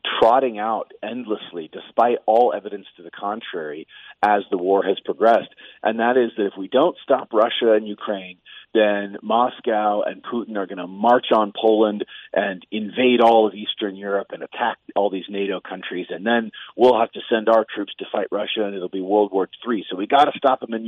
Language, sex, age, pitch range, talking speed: English, male, 40-59, 105-135 Hz, 205 wpm